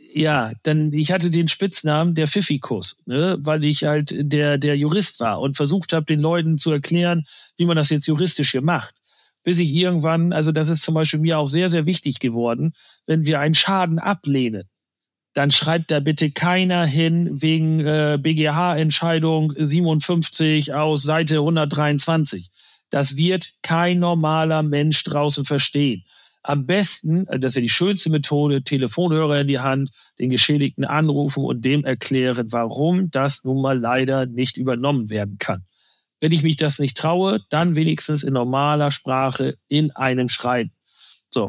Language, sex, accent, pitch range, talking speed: German, male, German, 135-160 Hz, 160 wpm